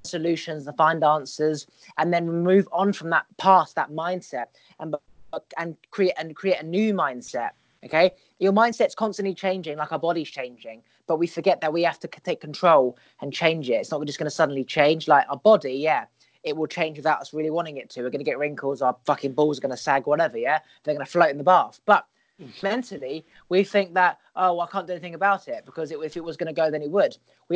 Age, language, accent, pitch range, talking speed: 20-39, English, British, 150-180 Hz, 230 wpm